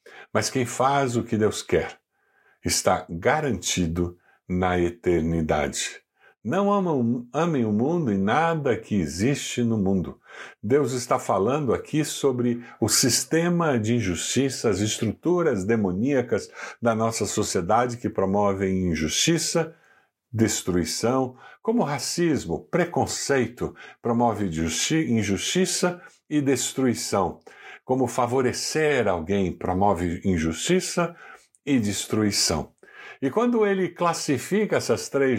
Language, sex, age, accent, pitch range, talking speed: Portuguese, male, 60-79, Brazilian, 100-150 Hz, 100 wpm